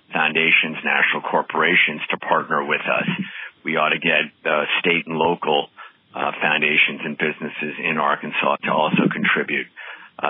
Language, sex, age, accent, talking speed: English, male, 50-69, American, 145 wpm